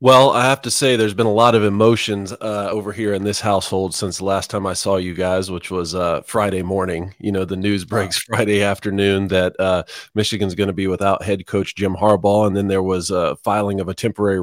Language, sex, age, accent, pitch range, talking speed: English, male, 30-49, American, 95-115 Hz, 235 wpm